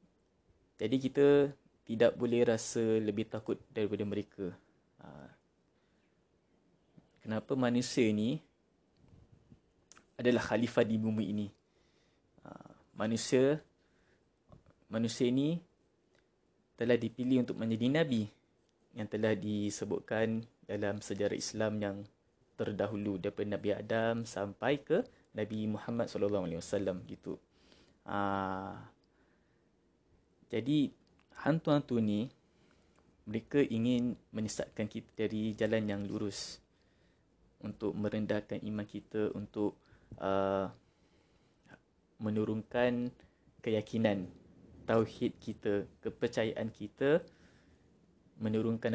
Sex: male